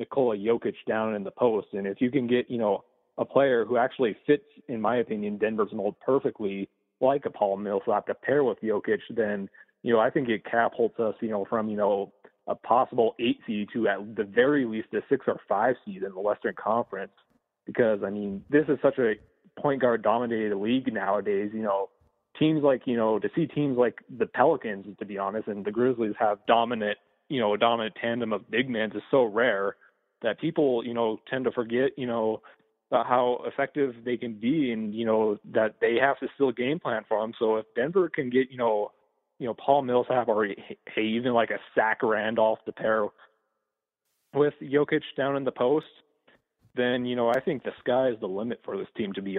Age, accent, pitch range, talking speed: 20-39, American, 105-135 Hz, 215 wpm